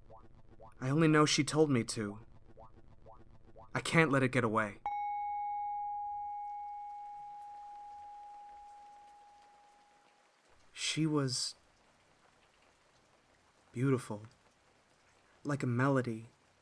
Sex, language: male, English